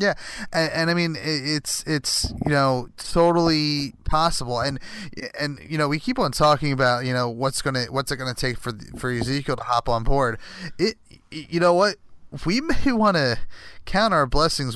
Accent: American